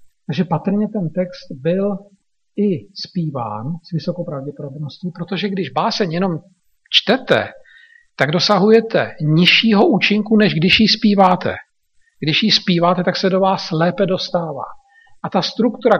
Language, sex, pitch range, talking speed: Slovak, male, 175-220 Hz, 130 wpm